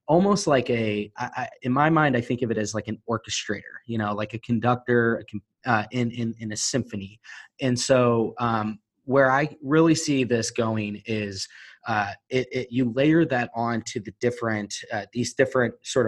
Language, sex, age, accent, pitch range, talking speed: English, male, 20-39, American, 110-130 Hz, 185 wpm